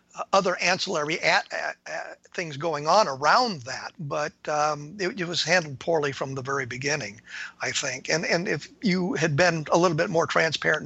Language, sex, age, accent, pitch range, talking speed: English, male, 50-69, American, 150-180 Hz, 190 wpm